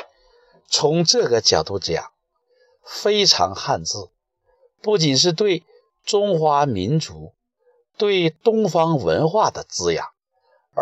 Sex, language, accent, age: male, Chinese, native, 50-69